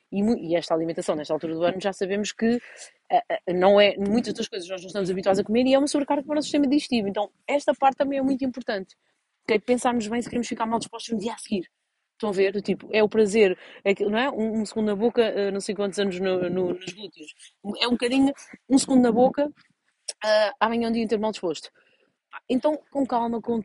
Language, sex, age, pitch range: Portuguese, female, 30-49, 200-255 Hz